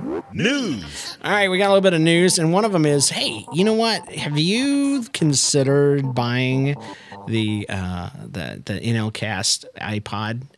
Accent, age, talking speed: American, 40-59, 165 wpm